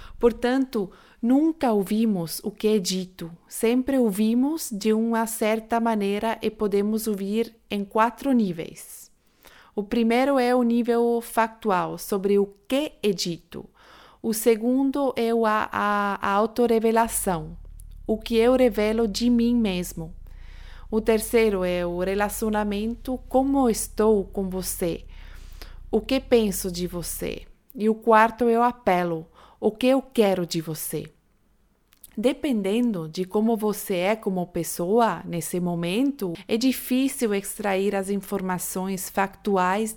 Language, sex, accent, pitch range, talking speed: Portuguese, female, Brazilian, 185-230 Hz, 130 wpm